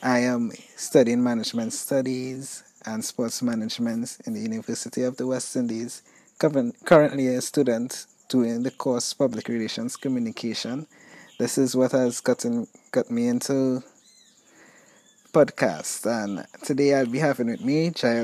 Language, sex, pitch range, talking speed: English, male, 125-165 Hz, 135 wpm